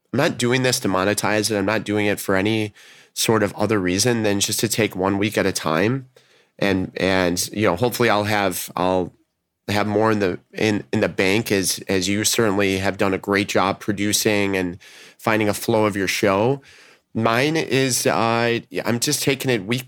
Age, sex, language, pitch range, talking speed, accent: 30-49, male, English, 95-120 Hz, 200 wpm, American